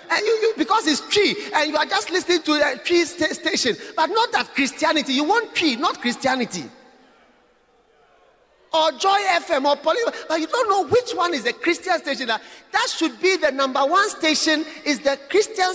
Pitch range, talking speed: 260-360 Hz, 185 wpm